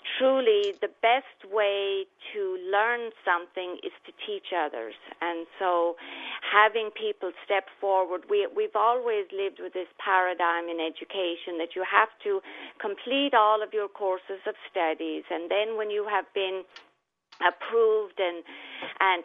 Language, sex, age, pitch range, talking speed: English, female, 40-59, 180-235 Hz, 140 wpm